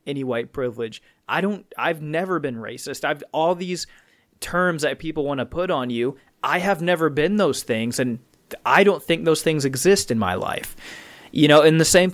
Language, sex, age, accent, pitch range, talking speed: English, male, 20-39, American, 125-170 Hz, 205 wpm